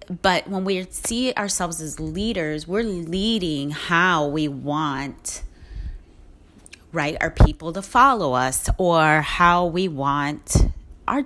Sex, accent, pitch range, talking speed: female, American, 145-190 Hz, 125 wpm